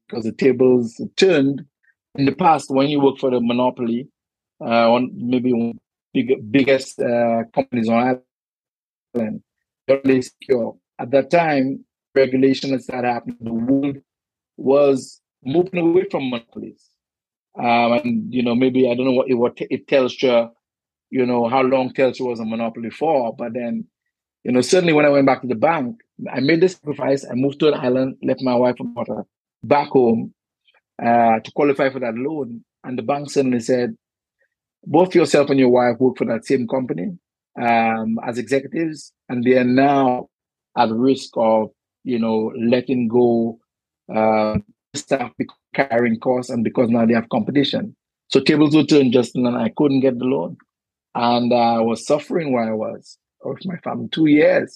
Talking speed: 175 wpm